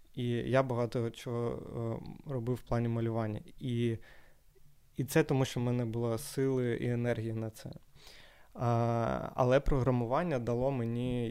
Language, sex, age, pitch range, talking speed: Ukrainian, male, 20-39, 115-130 Hz, 140 wpm